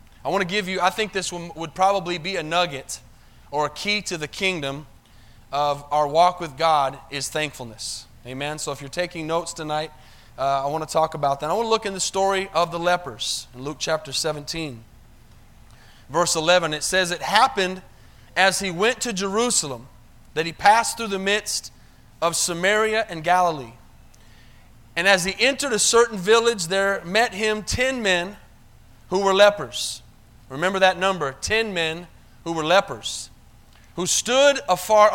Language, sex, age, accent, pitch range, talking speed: English, male, 30-49, American, 145-210 Hz, 170 wpm